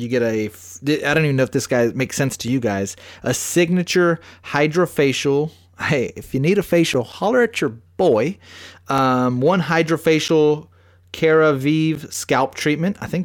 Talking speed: 165 wpm